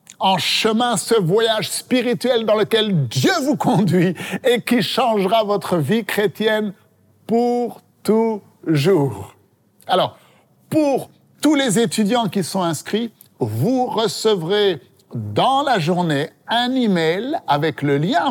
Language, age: French, 60-79